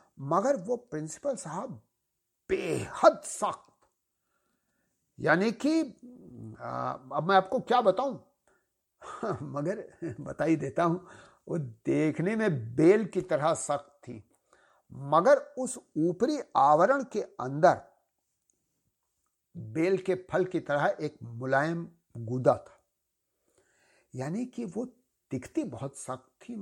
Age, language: 60-79, English